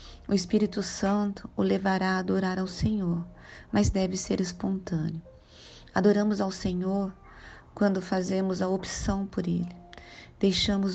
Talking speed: 125 wpm